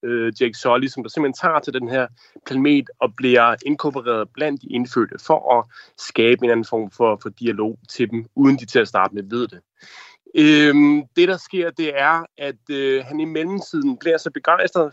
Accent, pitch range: native, 120-160 Hz